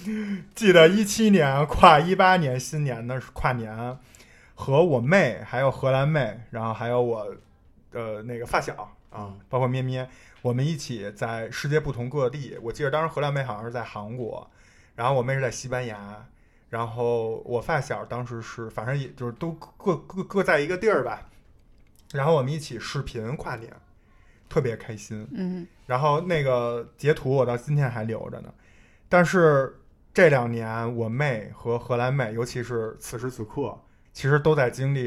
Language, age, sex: Chinese, 20-39, male